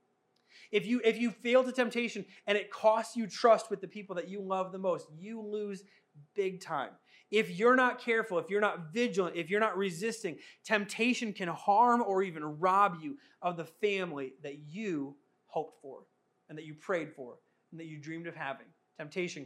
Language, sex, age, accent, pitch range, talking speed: English, male, 30-49, American, 165-210 Hz, 190 wpm